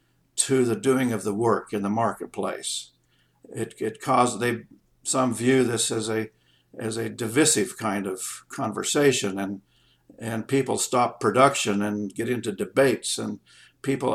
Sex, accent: male, American